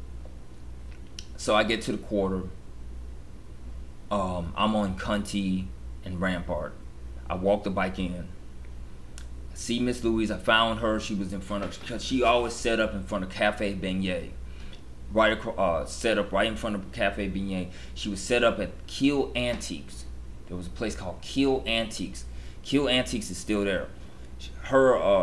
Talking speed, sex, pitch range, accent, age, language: 165 wpm, male, 65-105 Hz, American, 20-39, English